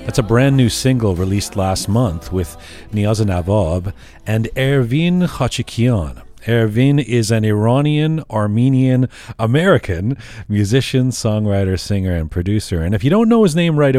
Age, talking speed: 40-59, 135 wpm